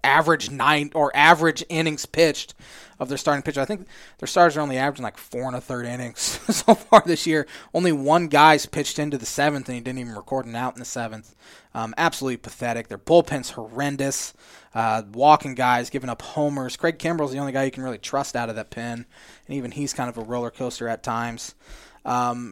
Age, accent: 20-39, American